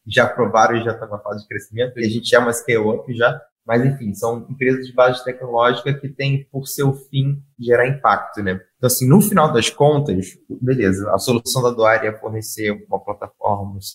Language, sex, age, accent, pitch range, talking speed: Portuguese, male, 20-39, Brazilian, 105-125 Hz, 205 wpm